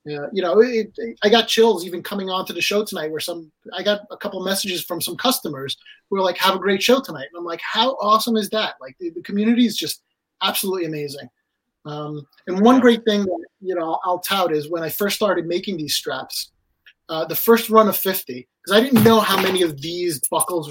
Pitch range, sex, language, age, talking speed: 160-220 Hz, male, English, 30-49, 240 wpm